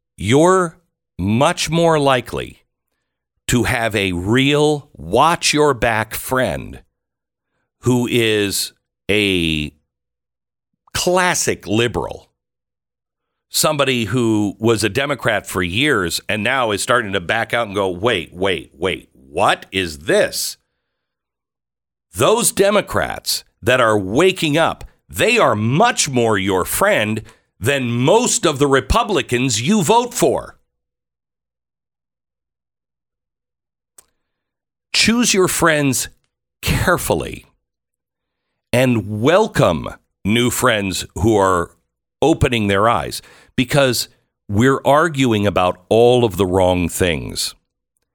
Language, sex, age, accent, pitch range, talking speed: English, male, 60-79, American, 90-140 Hz, 100 wpm